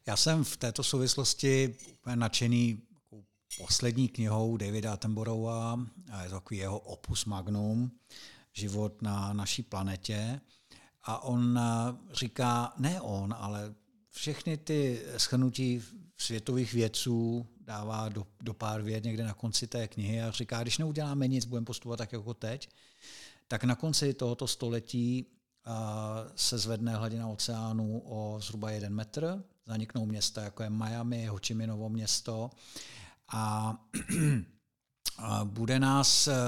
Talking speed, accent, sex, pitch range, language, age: 125 wpm, native, male, 110-130 Hz, Czech, 50-69